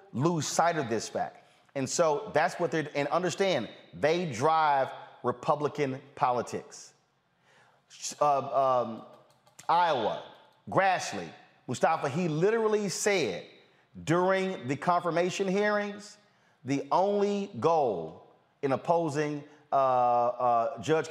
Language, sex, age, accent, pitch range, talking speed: English, male, 30-49, American, 135-180 Hz, 100 wpm